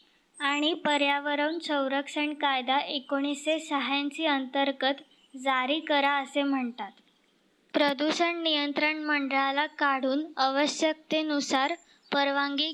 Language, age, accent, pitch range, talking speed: Marathi, 20-39, native, 270-295 Hz, 80 wpm